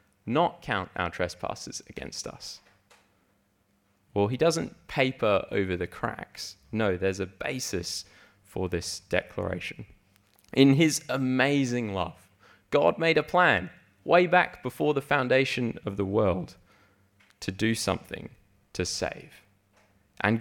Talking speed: 125 wpm